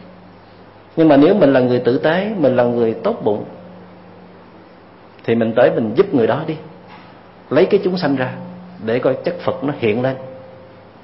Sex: male